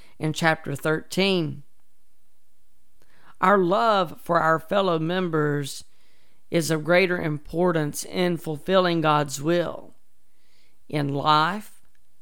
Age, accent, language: 40-59, American, English